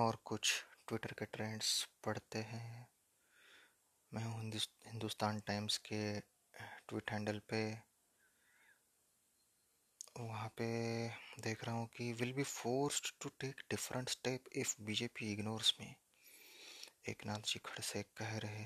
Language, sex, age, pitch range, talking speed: Hindi, male, 20-39, 105-120 Hz, 120 wpm